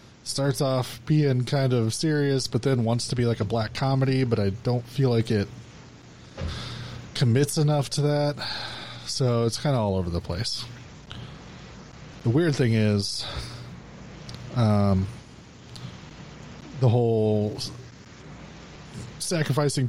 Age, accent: 20-39, American